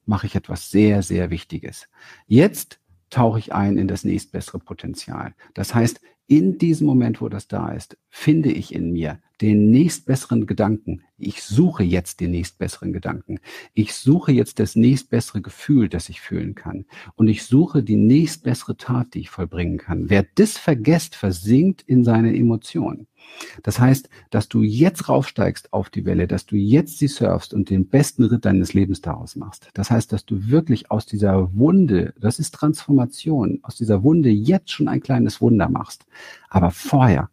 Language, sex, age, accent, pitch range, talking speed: German, male, 50-69, German, 100-140 Hz, 170 wpm